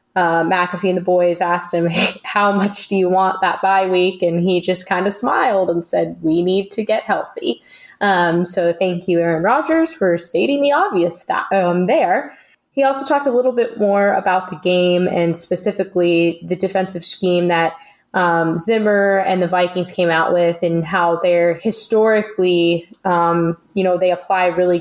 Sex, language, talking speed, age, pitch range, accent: female, English, 185 wpm, 20-39, 175-200 Hz, American